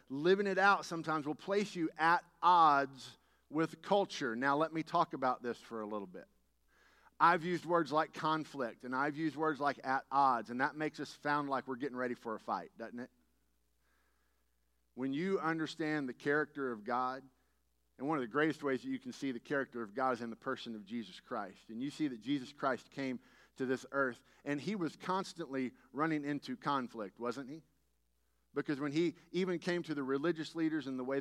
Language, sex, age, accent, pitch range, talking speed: English, male, 50-69, American, 125-165 Hz, 205 wpm